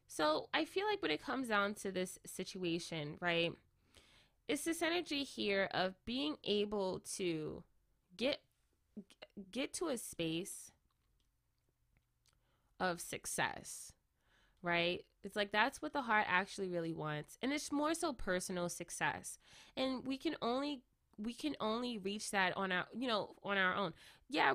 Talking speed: 145 wpm